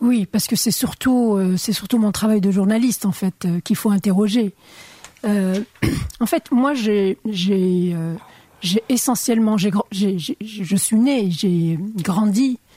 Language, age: French, 50-69